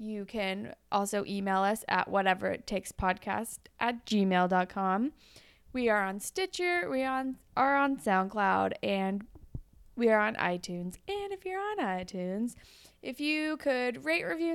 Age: 20-39